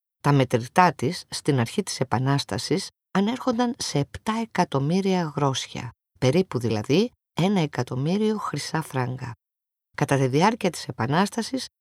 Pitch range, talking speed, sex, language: 130-200 Hz, 115 wpm, female, Greek